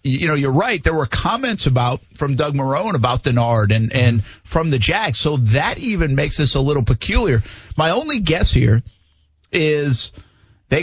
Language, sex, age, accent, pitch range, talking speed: English, male, 50-69, American, 115-160 Hz, 175 wpm